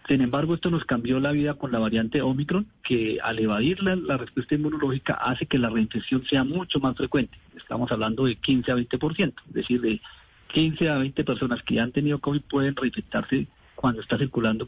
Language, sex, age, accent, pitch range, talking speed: Spanish, male, 40-59, Colombian, 125-150 Hz, 200 wpm